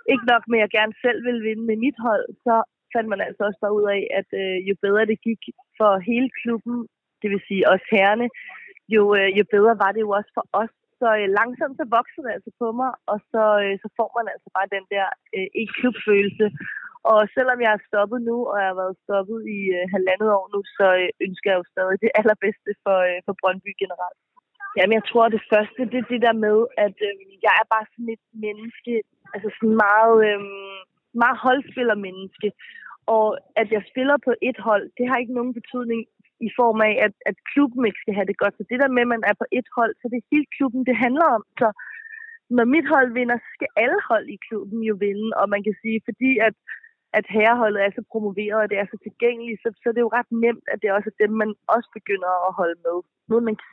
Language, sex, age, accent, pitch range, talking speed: Danish, female, 20-39, native, 205-240 Hz, 235 wpm